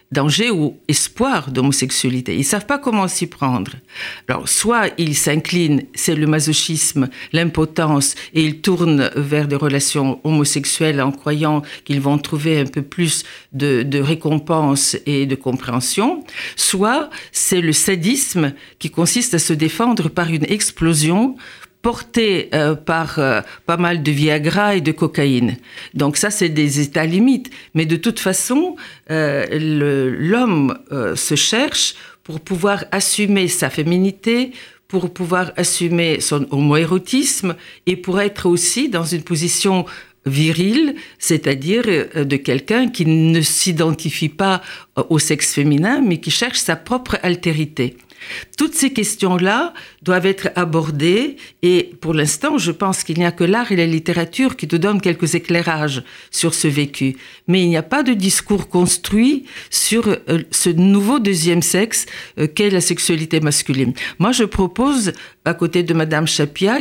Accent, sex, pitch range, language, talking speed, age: French, female, 150-200 Hz, French, 150 wpm, 50-69